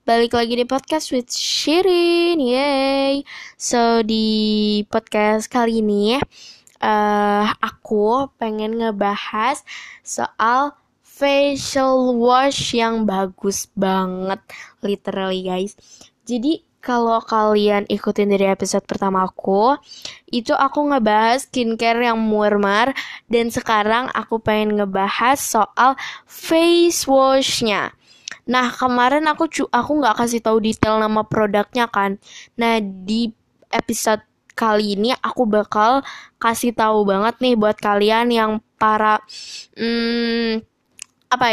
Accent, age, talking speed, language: native, 10-29, 110 wpm, Indonesian